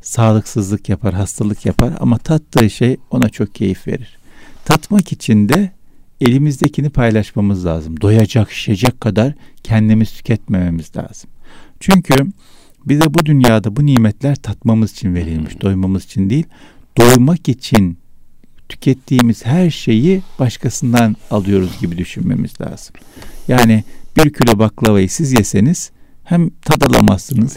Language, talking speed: Turkish, 115 wpm